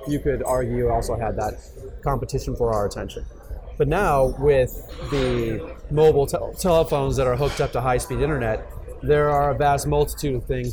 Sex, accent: male, American